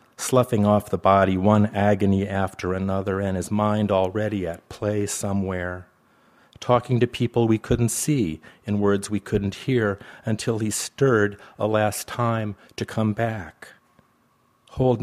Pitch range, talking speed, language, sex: 95-110 Hz, 145 wpm, English, male